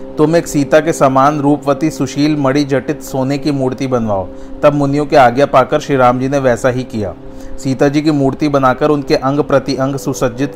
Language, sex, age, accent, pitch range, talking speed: Hindi, male, 40-59, native, 125-145 Hz, 195 wpm